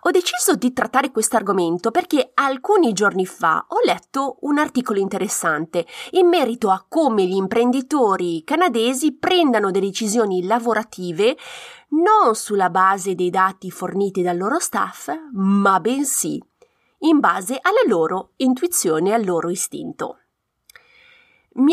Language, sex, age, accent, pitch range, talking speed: Italian, female, 30-49, native, 195-310 Hz, 130 wpm